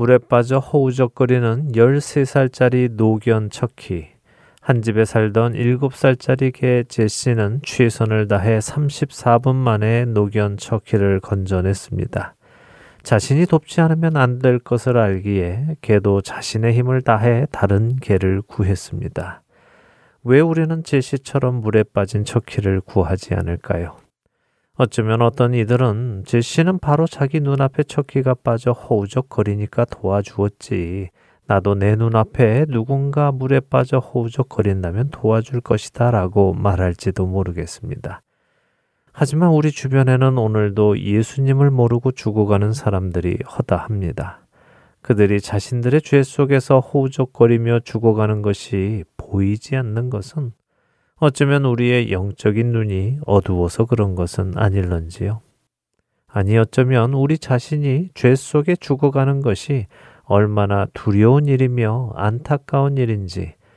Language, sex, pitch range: Korean, male, 100-130 Hz